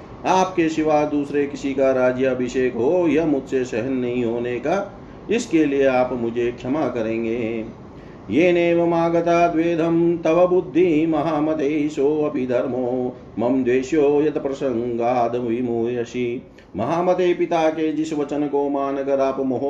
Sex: male